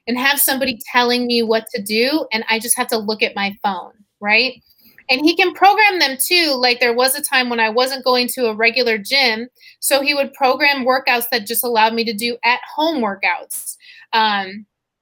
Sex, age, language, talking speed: female, 30-49, English, 210 wpm